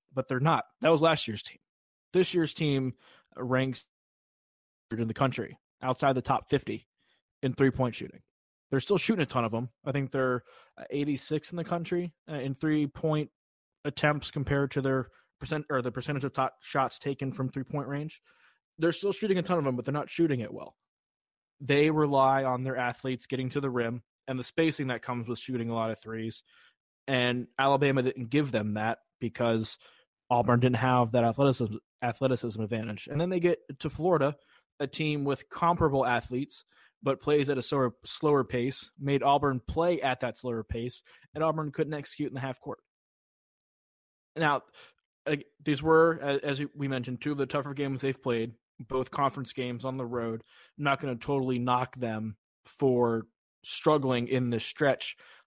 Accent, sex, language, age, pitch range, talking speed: American, male, English, 20-39, 120-145 Hz, 180 wpm